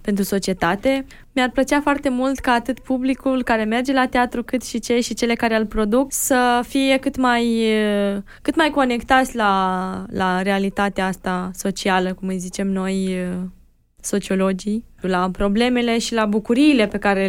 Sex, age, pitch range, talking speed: female, 20-39, 200-270 Hz, 155 wpm